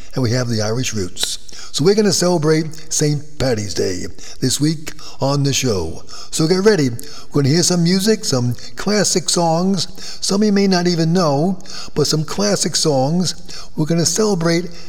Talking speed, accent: 180 wpm, American